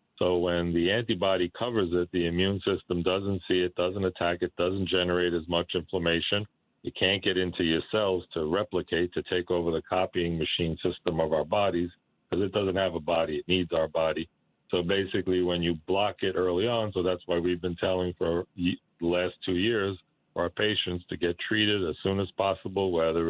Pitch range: 85-90 Hz